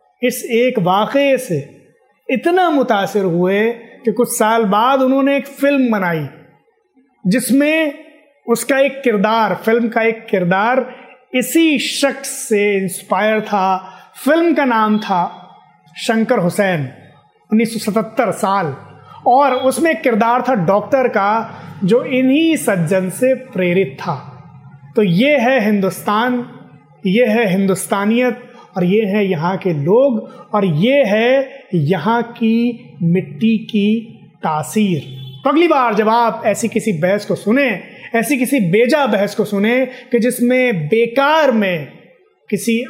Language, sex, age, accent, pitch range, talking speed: Hindi, male, 30-49, native, 190-250 Hz, 125 wpm